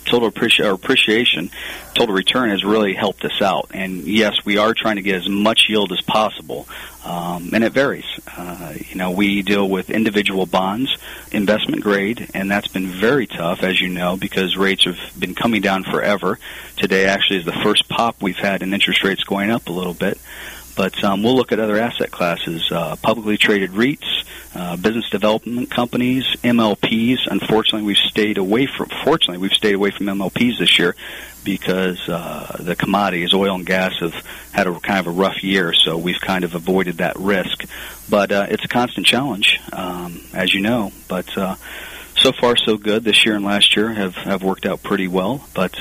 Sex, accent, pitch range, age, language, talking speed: male, American, 95-110 Hz, 40-59, English, 190 wpm